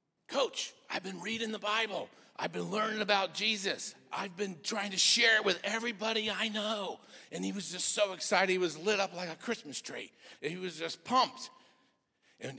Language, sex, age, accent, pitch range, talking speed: English, male, 50-69, American, 145-195 Hz, 195 wpm